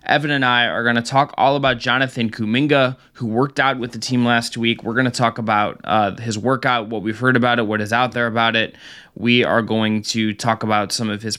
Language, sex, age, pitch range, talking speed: English, male, 20-39, 110-130 Hz, 250 wpm